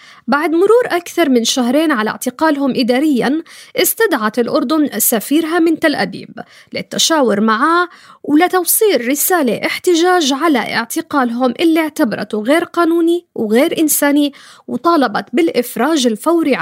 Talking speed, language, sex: 110 wpm, Arabic, female